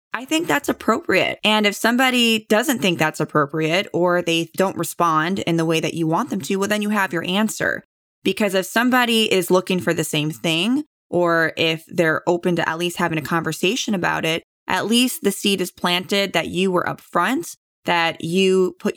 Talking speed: 200 wpm